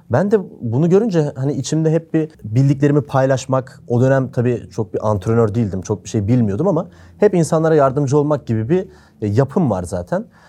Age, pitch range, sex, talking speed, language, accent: 30-49, 110-155 Hz, male, 175 wpm, Turkish, native